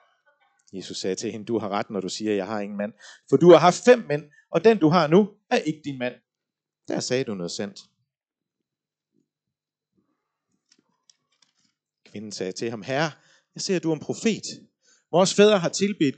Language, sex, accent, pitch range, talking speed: Danish, male, native, 120-200 Hz, 190 wpm